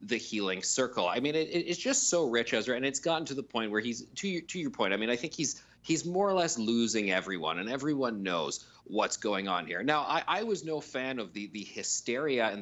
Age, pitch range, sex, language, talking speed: 30-49, 105-145 Hz, male, English, 250 wpm